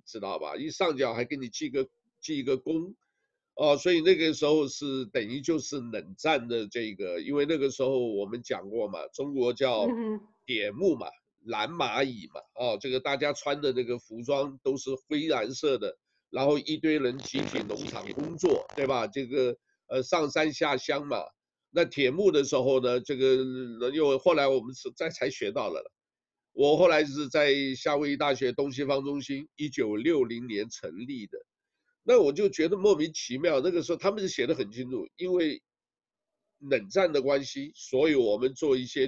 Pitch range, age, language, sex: 130-195 Hz, 60-79, Chinese, male